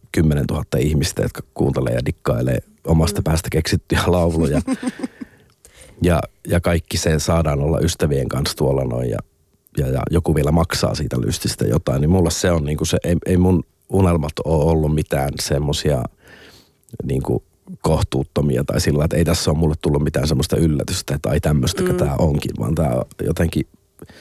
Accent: native